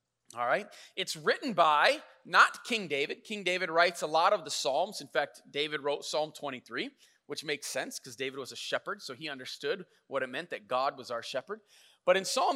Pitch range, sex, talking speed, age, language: 155-235 Hz, male, 210 wpm, 30-49, English